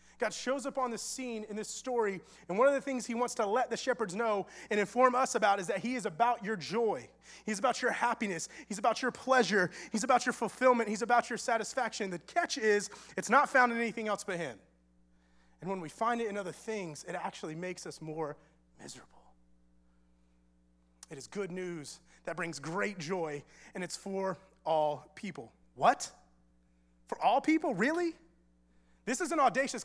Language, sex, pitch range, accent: English, male, 160-245 Hz, American